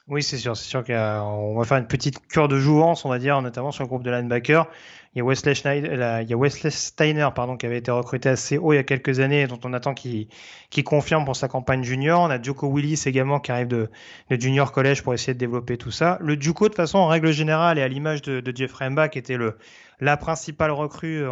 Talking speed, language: 265 wpm, French